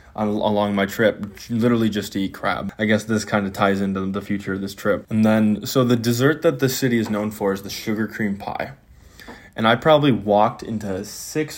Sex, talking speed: male, 220 wpm